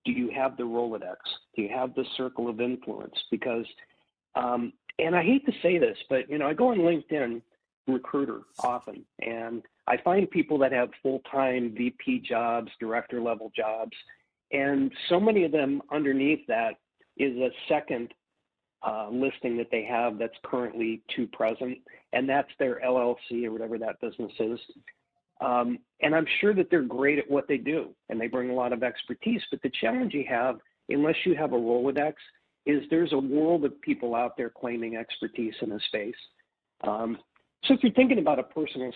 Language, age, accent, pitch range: English, 50-69, American, 115-140 Hz